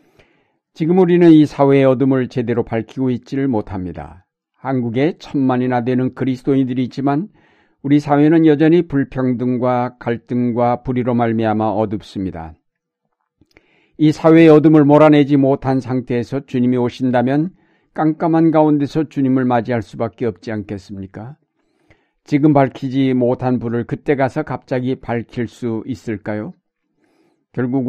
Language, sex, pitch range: Korean, male, 120-150 Hz